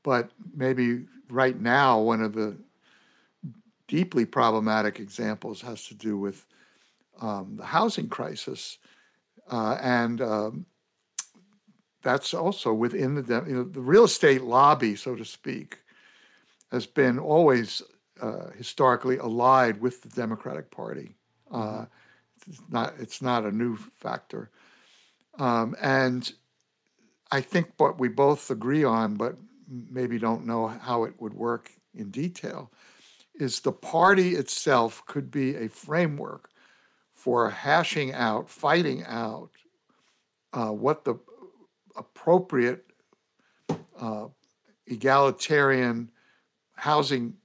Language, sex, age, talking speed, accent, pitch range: English, male, 60-79, 115 wpm, American, 115-145 Hz